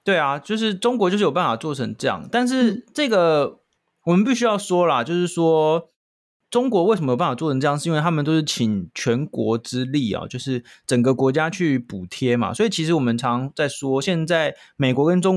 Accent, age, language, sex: native, 20-39, Chinese, male